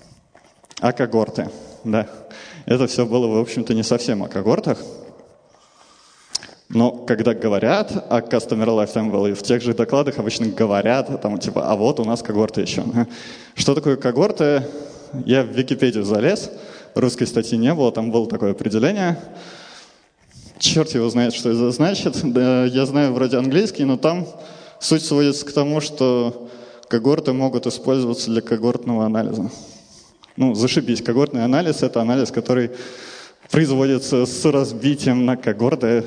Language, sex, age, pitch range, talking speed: Russian, male, 20-39, 110-135 Hz, 145 wpm